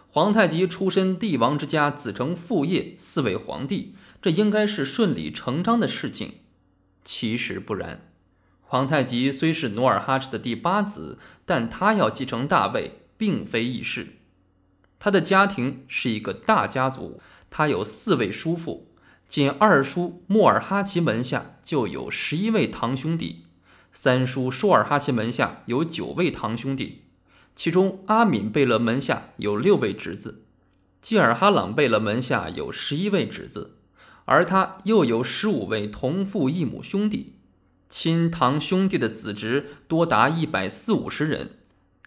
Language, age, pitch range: Chinese, 20-39, 115-190 Hz